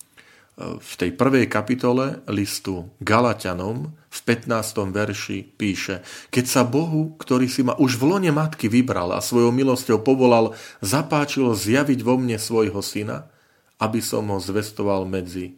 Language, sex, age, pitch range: Slovak, male, 40-59, 100-130 Hz